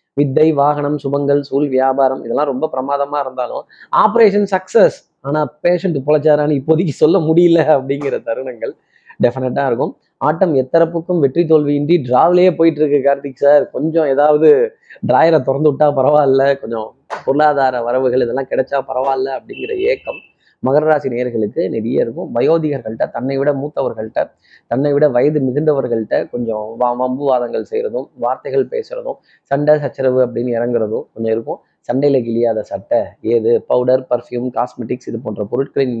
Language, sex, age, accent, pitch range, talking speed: Tamil, male, 20-39, native, 125-155 Hz, 130 wpm